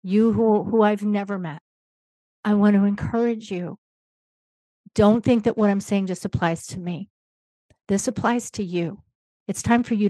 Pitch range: 185-220 Hz